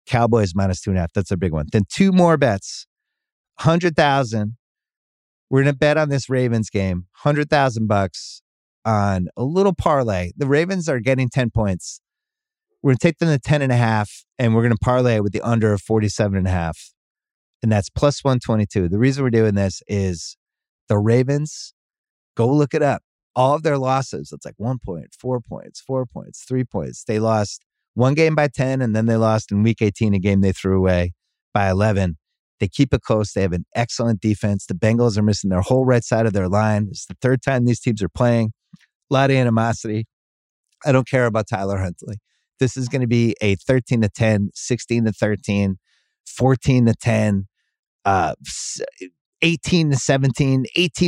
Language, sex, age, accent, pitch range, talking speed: English, male, 30-49, American, 100-135 Hz, 195 wpm